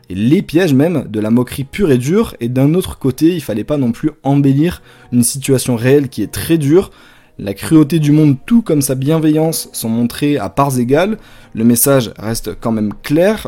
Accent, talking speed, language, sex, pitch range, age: French, 205 wpm, French, male, 120-155 Hz, 20-39